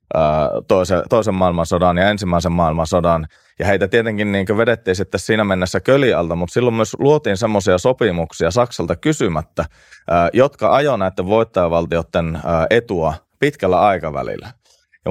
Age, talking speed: 30-49, 125 wpm